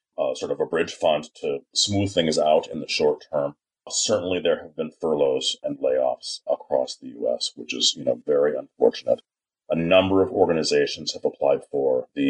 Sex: male